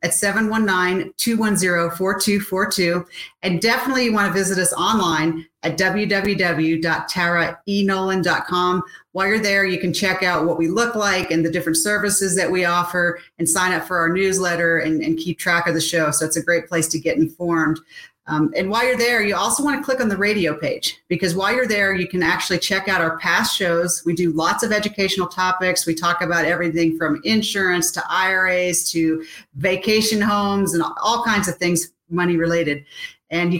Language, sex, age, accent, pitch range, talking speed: English, female, 40-59, American, 170-205 Hz, 180 wpm